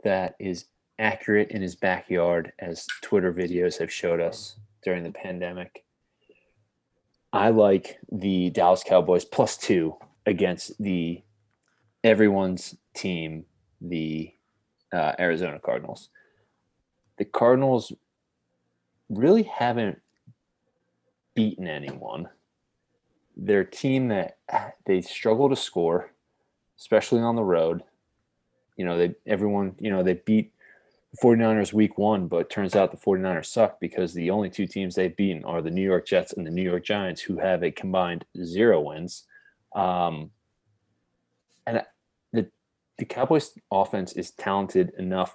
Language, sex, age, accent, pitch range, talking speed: English, male, 30-49, American, 90-105 Hz, 130 wpm